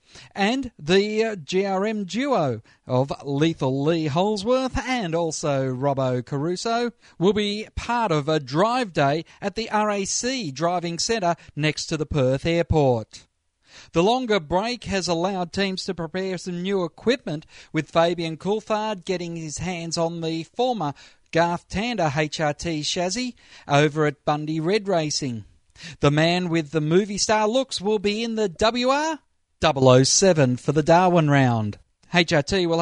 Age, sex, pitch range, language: 40-59, male, 155-205 Hz, English